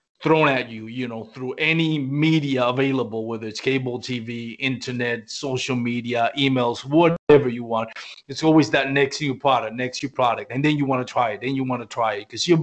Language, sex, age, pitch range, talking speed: English, male, 30-49, 120-145 Hz, 200 wpm